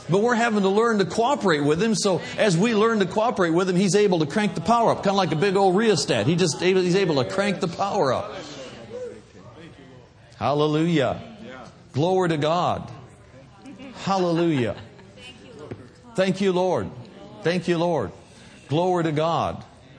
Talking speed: 155 wpm